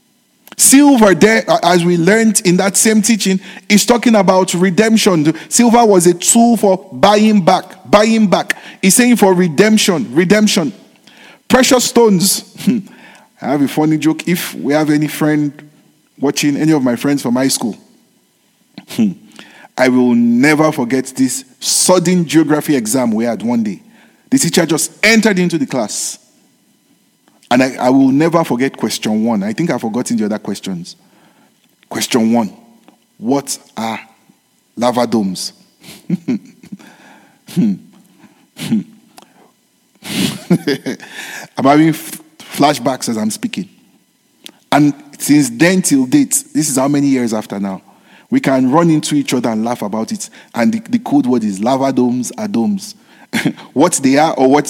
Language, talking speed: English, 145 wpm